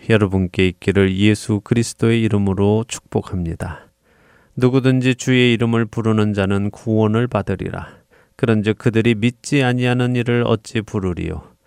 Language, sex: Korean, male